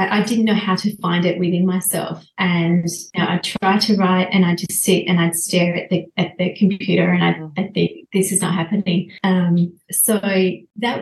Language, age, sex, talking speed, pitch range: English, 30-49, female, 195 wpm, 175-195 Hz